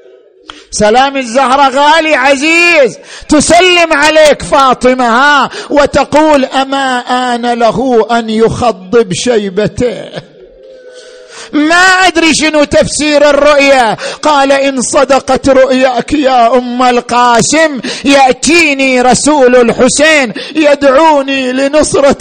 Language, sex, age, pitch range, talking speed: Arabic, male, 50-69, 245-300 Hz, 85 wpm